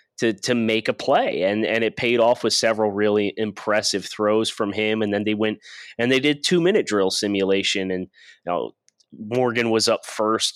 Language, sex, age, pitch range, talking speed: English, male, 30-49, 100-120 Hz, 200 wpm